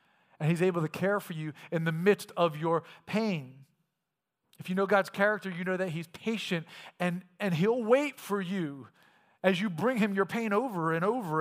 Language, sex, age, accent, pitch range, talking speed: English, male, 40-59, American, 150-185 Hz, 200 wpm